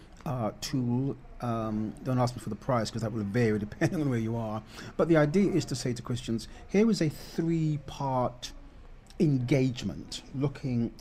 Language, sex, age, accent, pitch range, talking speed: English, male, 40-59, British, 110-145 Hz, 180 wpm